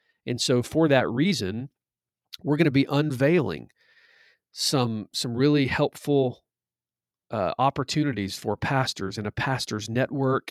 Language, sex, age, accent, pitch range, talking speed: English, male, 40-59, American, 110-140 Hz, 125 wpm